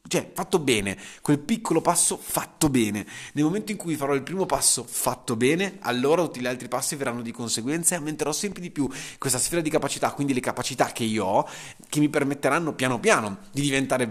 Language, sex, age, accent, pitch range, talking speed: Italian, male, 20-39, native, 115-145 Hz, 205 wpm